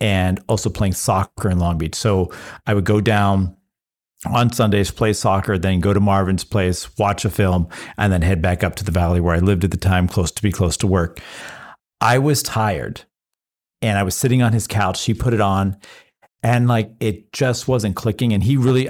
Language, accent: English, American